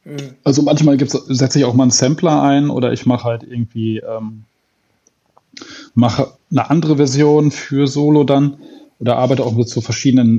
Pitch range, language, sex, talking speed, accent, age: 125-155 Hz, German, male, 170 wpm, German, 10-29